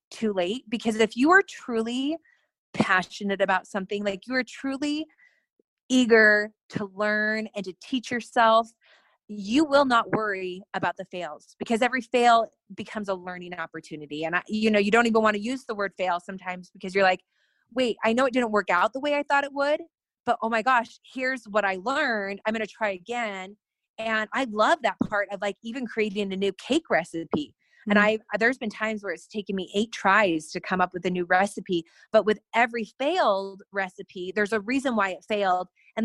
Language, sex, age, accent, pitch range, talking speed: English, female, 20-39, American, 195-240 Hz, 200 wpm